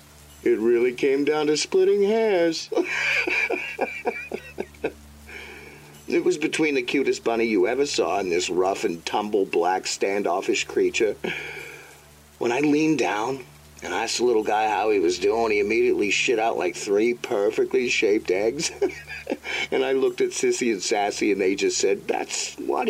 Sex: male